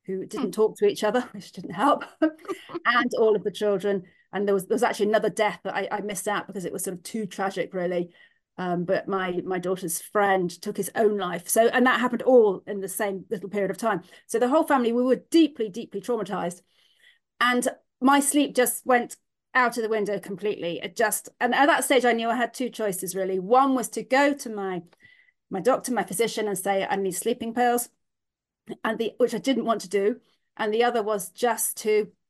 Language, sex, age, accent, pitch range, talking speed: English, female, 40-59, British, 195-250 Hz, 220 wpm